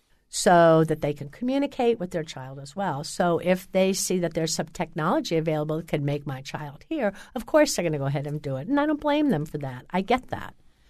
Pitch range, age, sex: 155-205 Hz, 60-79, female